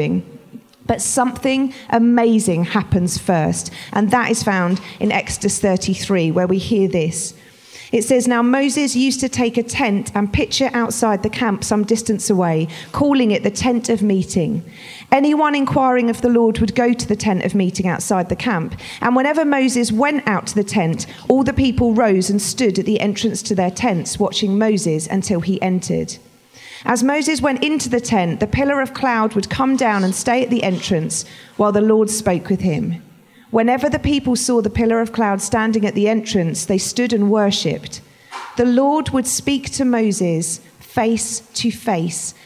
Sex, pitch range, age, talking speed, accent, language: female, 190-245 Hz, 40-59, 180 wpm, British, English